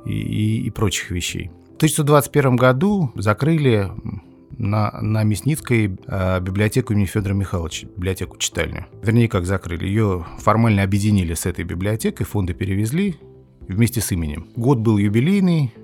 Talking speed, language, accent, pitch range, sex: 135 wpm, Russian, native, 95-115 Hz, male